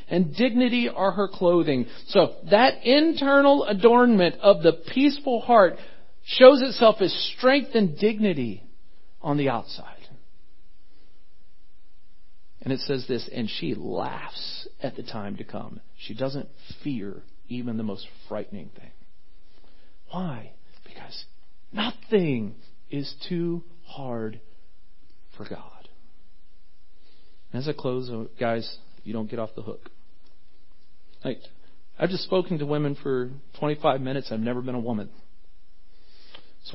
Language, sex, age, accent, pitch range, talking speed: English, male, 40-59, American, 105-155 Hz, 120 wpm